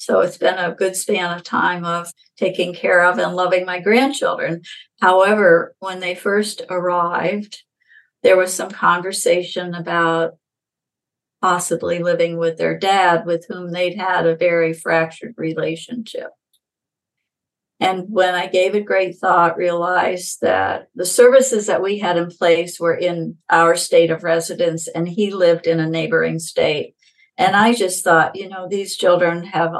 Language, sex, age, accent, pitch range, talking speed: English, female, 50-69, American, 170-200 Hz, 155 wpm